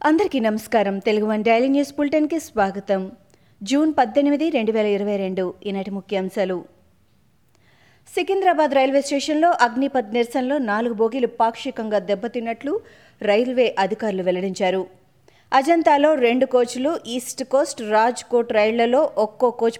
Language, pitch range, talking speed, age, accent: Telugu, 210-270 Hz, 65 wpm, 20-39, native